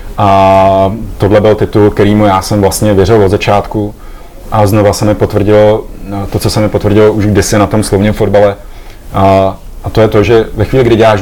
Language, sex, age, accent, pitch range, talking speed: Czech, male, 30-49, native, 95-105 Hz, 200 wpm